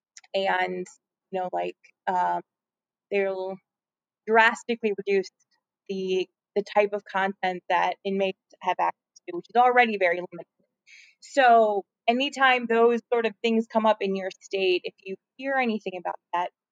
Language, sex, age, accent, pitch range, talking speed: English, female, 20-39, American, 185-220 Hz, 145 wpm